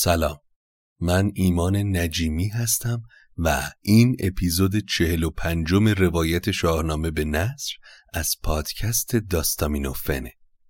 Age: 30-49